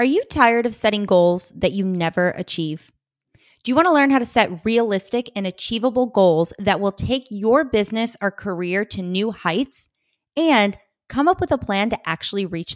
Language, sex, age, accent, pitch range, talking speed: English, female, 20-39, American, 185-235 Hz, 195 wpm